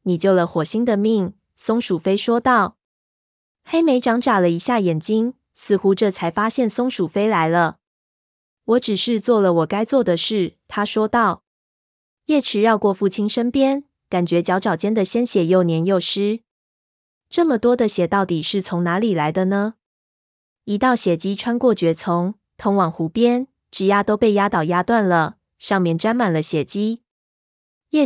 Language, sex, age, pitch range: Chinese, female, 20-39, 180-230 Hz